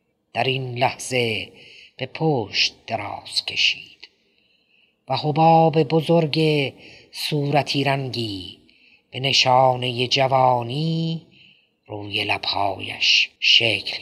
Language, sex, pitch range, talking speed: Persian, female, 120-160 Hz, 75 wpm